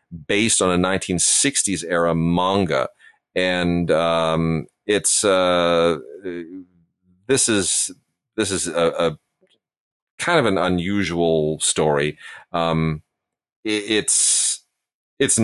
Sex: male